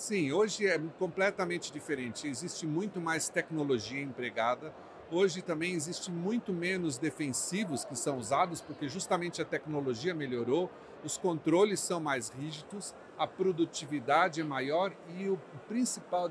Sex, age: male, 50-69